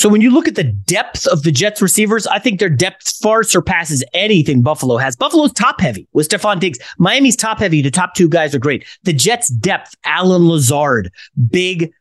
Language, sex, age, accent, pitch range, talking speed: English, male, 30-49, American, 145-200 Hz, 205 wpm